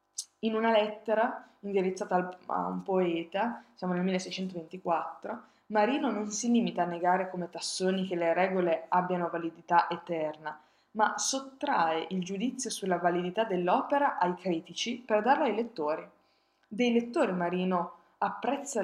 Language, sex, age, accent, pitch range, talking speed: Italian, female, 20-39, native, 175-240 Hz, 130 wpm